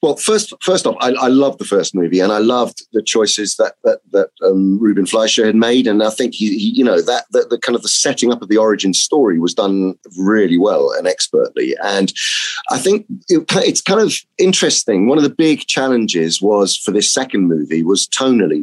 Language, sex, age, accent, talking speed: English, male, 30-49, British, 220 wpm